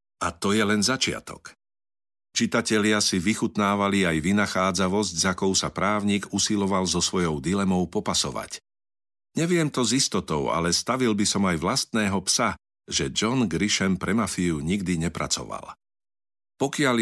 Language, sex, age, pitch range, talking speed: Slovak, male, 50-69, 90-105 Hz, 130 wpm